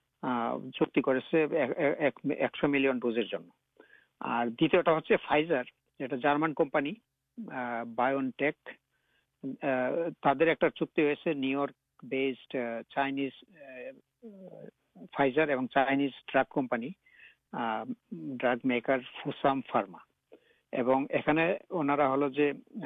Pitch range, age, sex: 130-155 Hz, 60-79, male